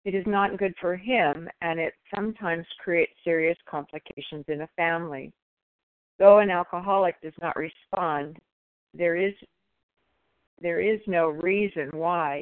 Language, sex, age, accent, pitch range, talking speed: English, female, 60-79, American, 160-190 Hz, 135 wpm